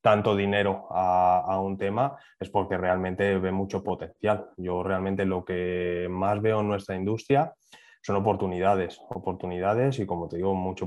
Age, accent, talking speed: 20-39, Spanish, 160 wpm